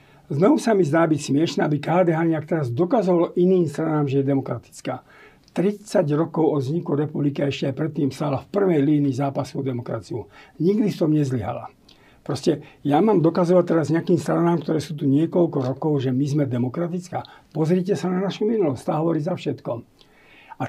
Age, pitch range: 50-69, 145-180 Hz